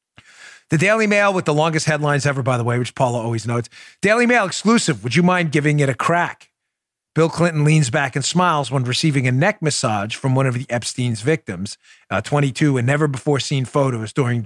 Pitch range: 120-150 Hz